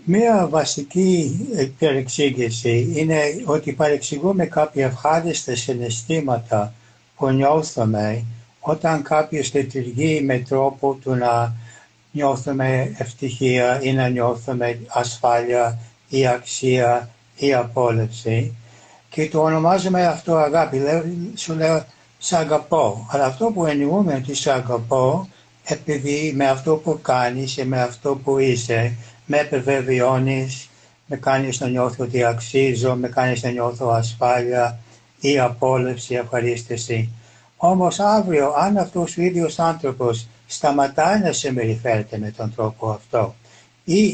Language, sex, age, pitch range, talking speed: Greek, male, 60-79, 120-155 Hz, 115 wpm